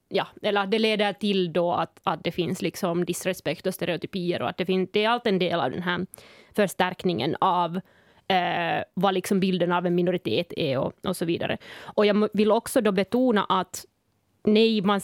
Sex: female